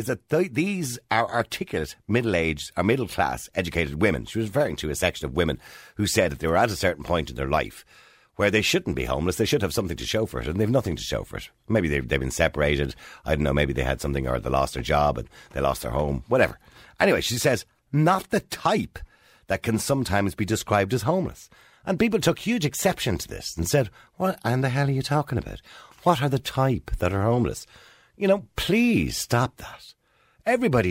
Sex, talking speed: male, 230 wpm